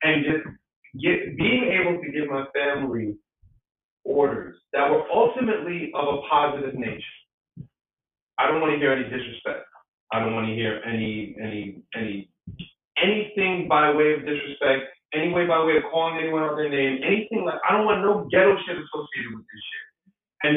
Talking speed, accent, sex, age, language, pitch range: 175 wpm, American, male, 30-49, English, 135-190 Hz